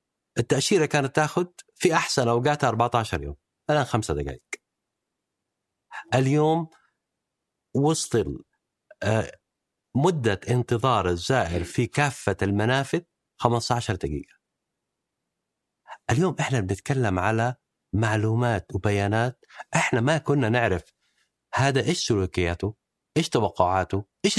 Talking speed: 90 wpm